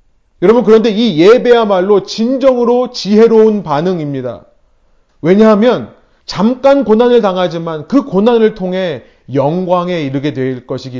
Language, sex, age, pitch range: Korean, male, 30-49, 140-200 Hz